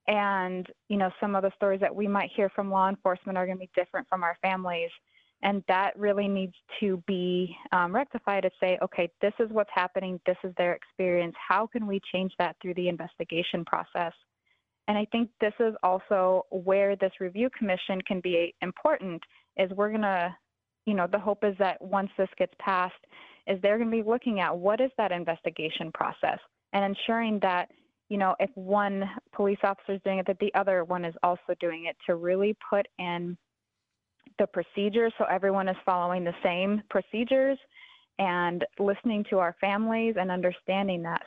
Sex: female